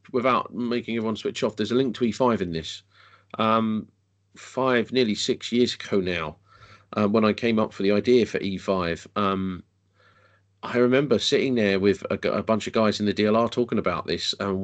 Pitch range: 100-115 Hz